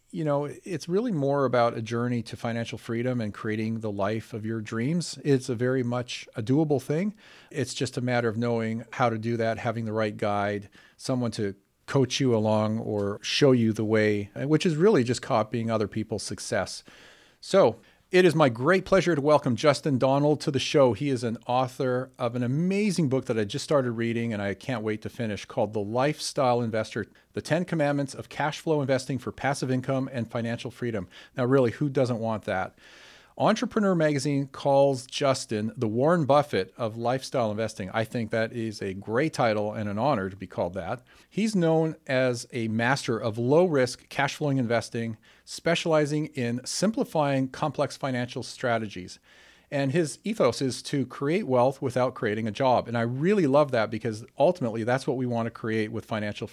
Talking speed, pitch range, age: 190 wpm, 110-145 Hz, 40-59